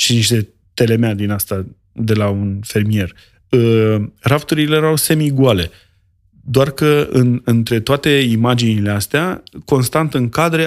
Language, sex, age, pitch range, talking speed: Romanian, male, 30-49, 105-140 Hz, 130 wpm